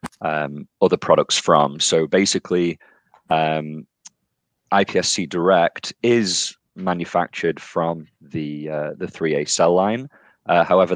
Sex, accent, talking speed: male, British, 110 wpm